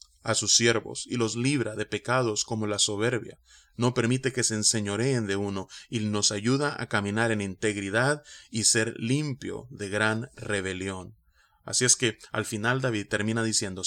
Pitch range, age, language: 100-120 Hz, 30-49, Spanish